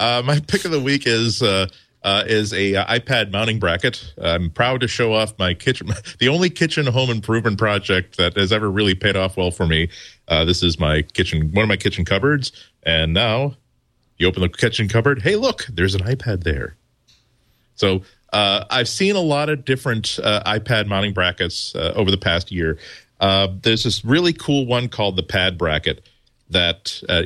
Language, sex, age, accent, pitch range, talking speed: English, male, 40-59, American, 90-115 Hz, 195 wpm